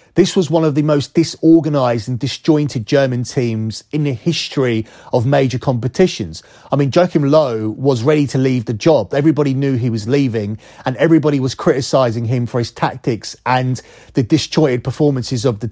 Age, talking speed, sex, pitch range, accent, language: 30-49, 175 wpm, male, 125-150 Hz, British, English